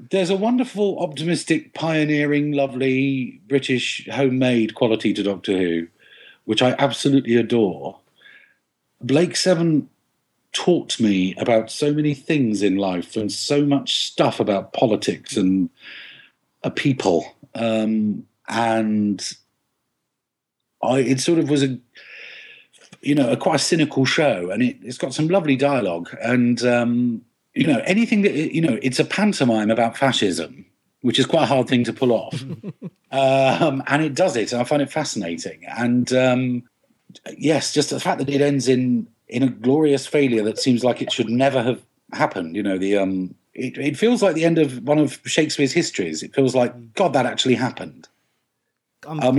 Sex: male